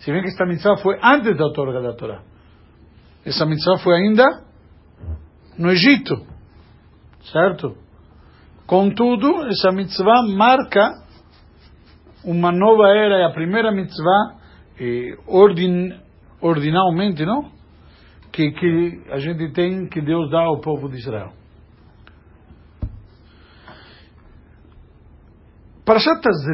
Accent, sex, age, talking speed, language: Italian, male, 60-79, 100 wpm, Portuguese